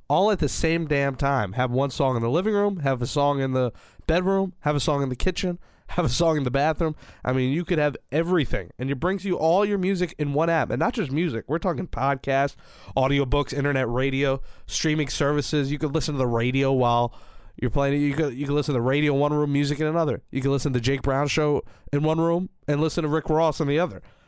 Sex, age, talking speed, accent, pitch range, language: male, 20-39, 245 wpm, American, 130-165 Hz, English